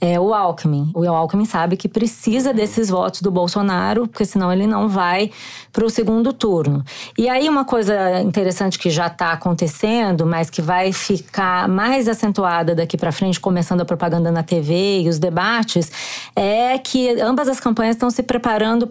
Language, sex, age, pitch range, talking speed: Portuguese, female, 20-39, 180-225 Hz, 175 wpm